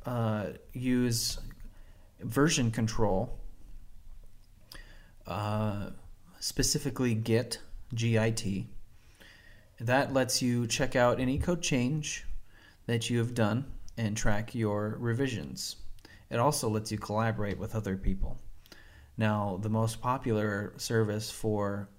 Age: 30-49